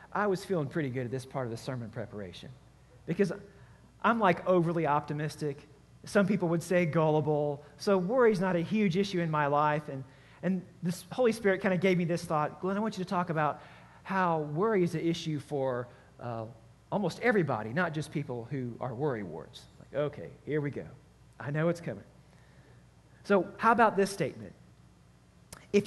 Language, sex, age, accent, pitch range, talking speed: English, male, 40-59, American, 145-195 Hz, 185 wpm